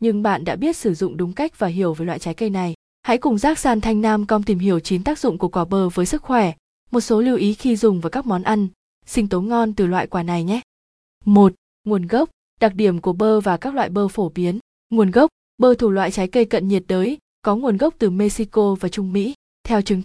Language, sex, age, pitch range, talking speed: Vietnamese, female, 20-39, 190-230 Hz, 250 wpm